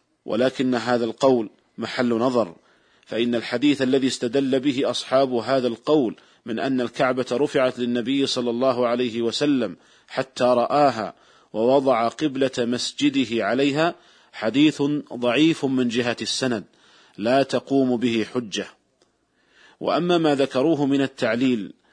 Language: Arabic